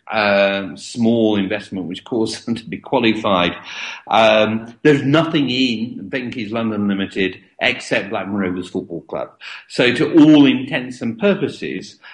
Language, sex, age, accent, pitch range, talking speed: English, male, 50-69, British, 100-135 Hz, 135 wpm